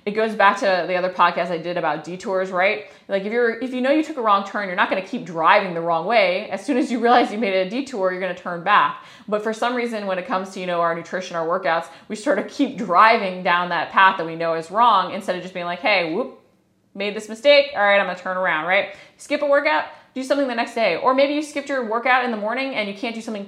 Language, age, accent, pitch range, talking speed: English, 20-39, American, 185-245 Hz, 290 wpm